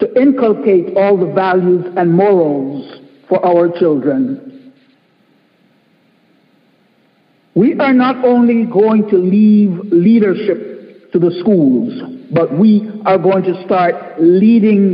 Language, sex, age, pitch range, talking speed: English, male, 60-79, 185-240 Hz, 115 wpm